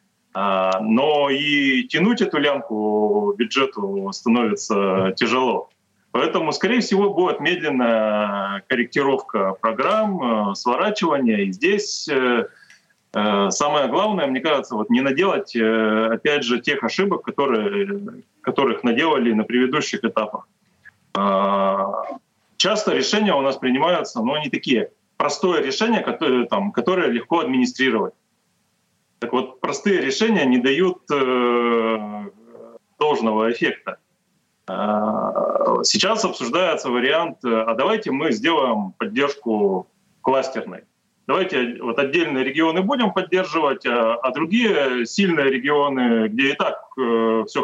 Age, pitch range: 30-49, 115-190 Hz